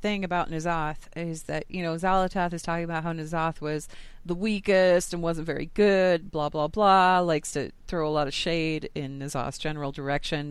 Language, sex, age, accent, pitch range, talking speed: English, female, 30-49, American, 145-180 Hz, 195 wpm